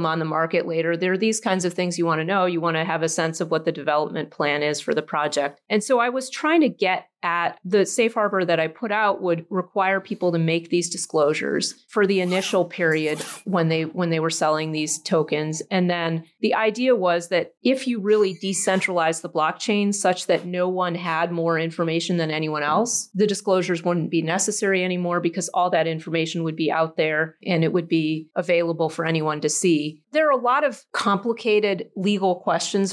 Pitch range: 165-195 Hz